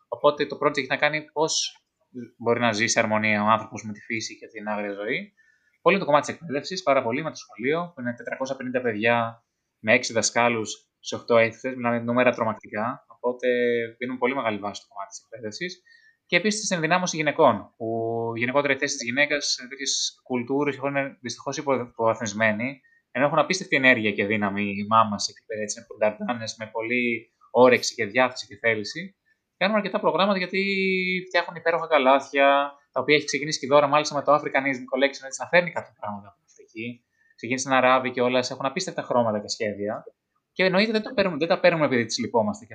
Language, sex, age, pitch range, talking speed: Greek, male, 20-39, 115-155 Hz, 185 wpm